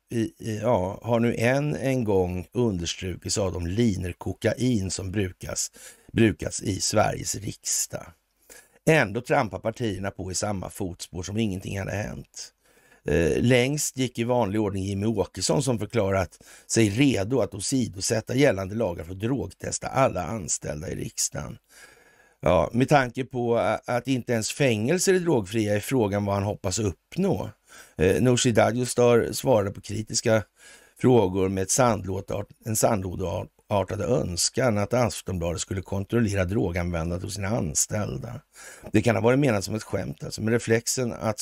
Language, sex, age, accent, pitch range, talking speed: Swedish, male, 60-79, native, 95-120 Hz, 145 wpm